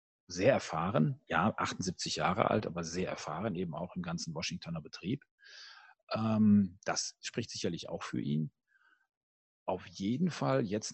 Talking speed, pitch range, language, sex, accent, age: 145 wpm, 85-110 Hz, German, male, German, 40-59